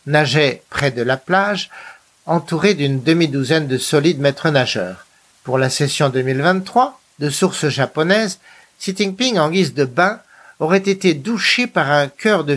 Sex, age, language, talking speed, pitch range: male, 60-79, French, 155 wpm, 145-195 Hz